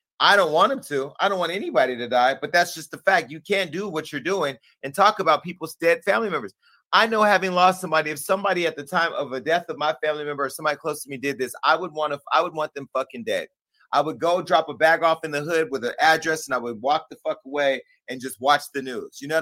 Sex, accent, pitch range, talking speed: male, American, 145-175 Hz, 280 wpm